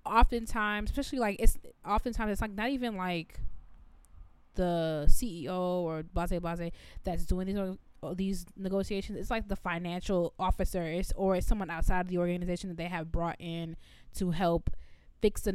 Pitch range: 165-205 Hz